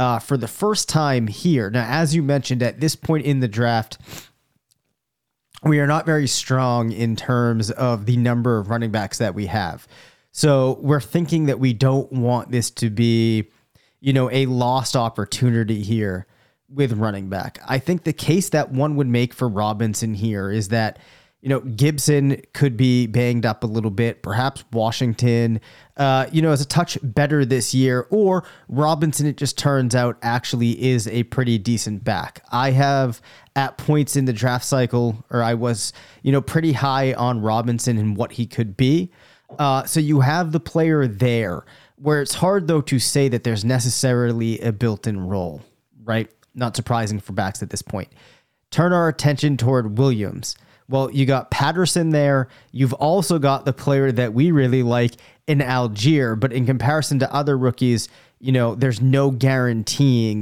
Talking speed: 180 wpm